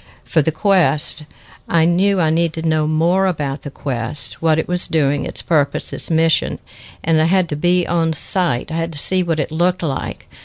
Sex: female